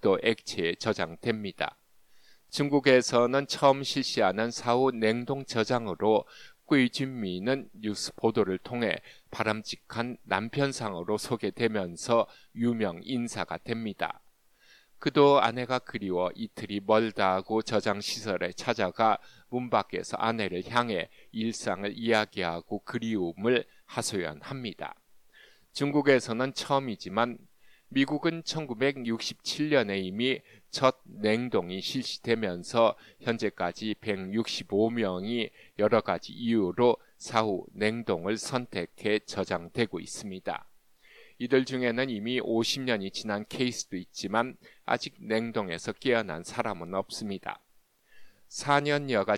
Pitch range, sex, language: 105-130 Hz, male, Korean